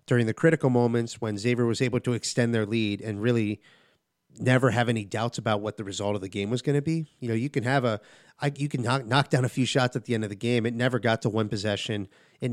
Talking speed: 270 wpm